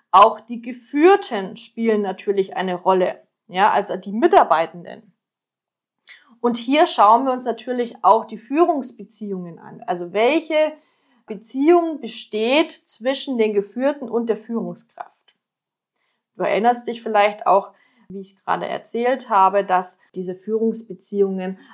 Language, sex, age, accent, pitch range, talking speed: German, female, 30-49, German, 195-245 Hz, 120 wpm